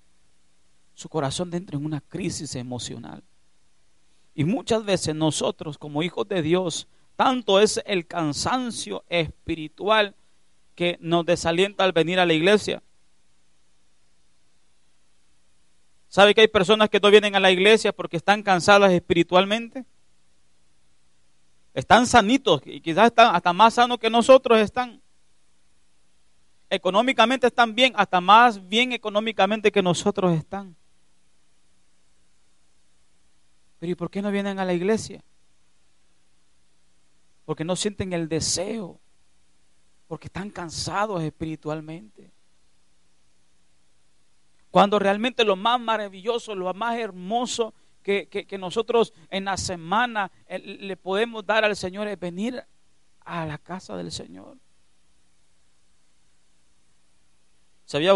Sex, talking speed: male, 110 wpm